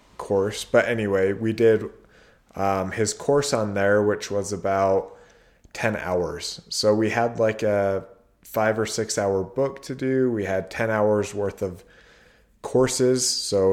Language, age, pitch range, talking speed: English, 20-39, 100-120 Hz, 155 wpm